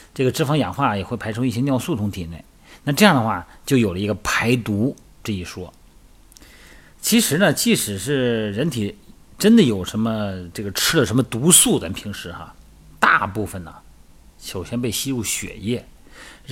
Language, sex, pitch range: Chinese, male, 95-135 Hz